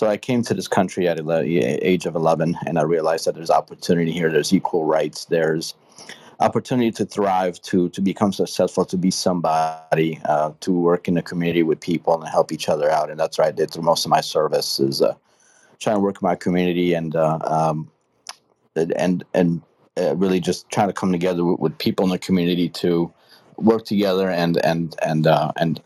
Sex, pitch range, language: male, 85-95 Hz, English